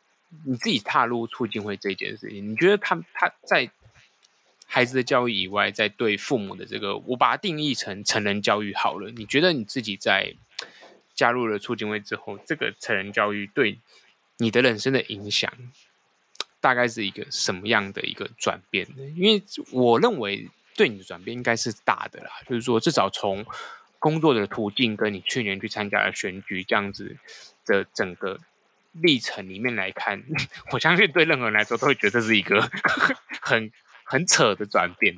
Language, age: Chinese, 20-39